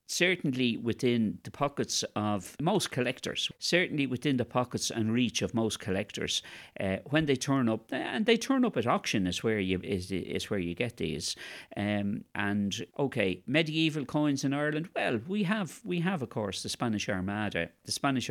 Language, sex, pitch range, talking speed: English, male, 100-135 Hz, 180 wpm